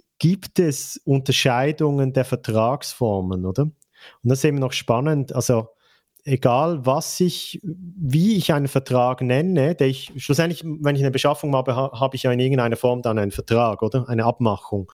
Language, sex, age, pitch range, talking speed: German, male, 40-59, 125-145 Hz, 165 wpm